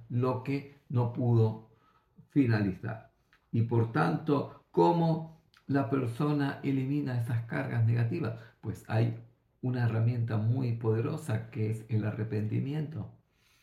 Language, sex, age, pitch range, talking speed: Greek, male, 50-69, 110-140 Hz, 110 wpm